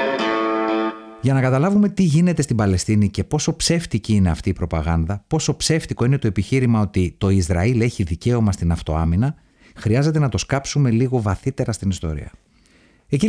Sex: male